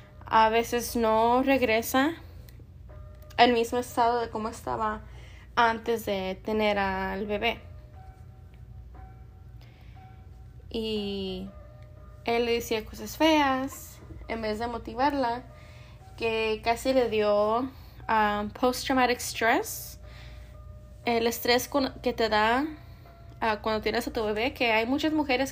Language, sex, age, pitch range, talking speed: English, female, 20-39, 210-250 Hz, 105 wpm